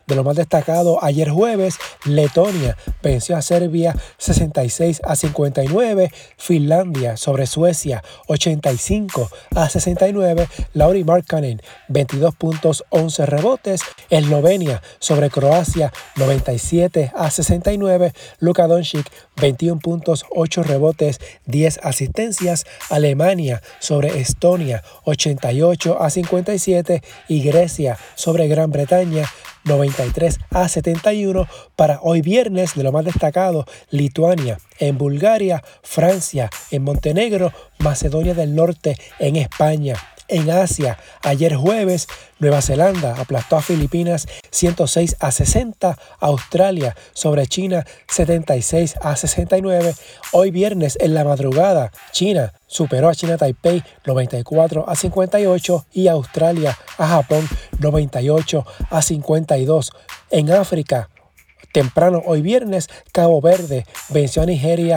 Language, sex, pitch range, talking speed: Spanish, male, 145-175 Hz, 110 wpm